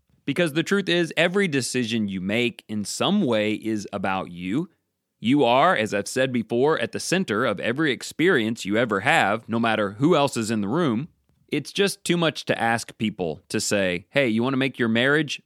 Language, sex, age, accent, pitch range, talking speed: English, male, 30-49, American, 105-150 Hz, 205 wpm